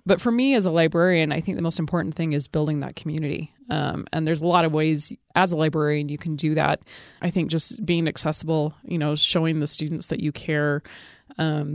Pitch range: 155-190 Hz